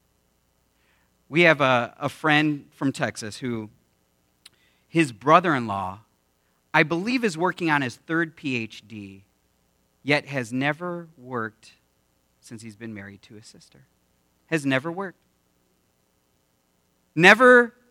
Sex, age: male, 40-59